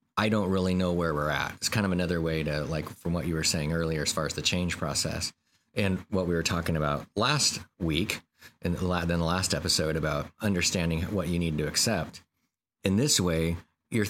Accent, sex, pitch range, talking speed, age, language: American, male, 85-105 Hz, 215 wpm, 30-49, English